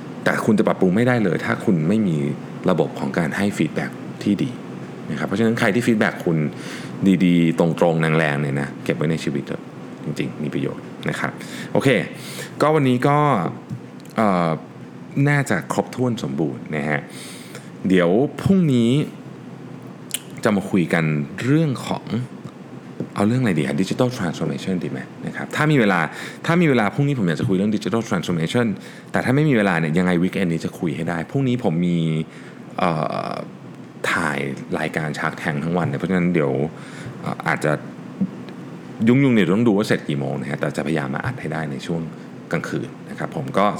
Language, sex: Thai, male